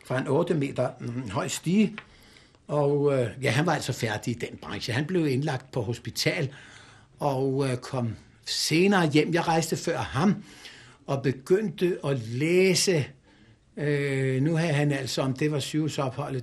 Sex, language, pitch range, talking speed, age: male, Danish, 125-150 Hz, 160 wpm, 60-79